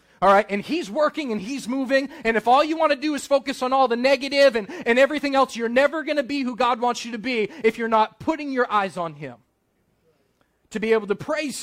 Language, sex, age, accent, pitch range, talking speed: English, male, 30-49, American, 225-325 Hz, 245 wpm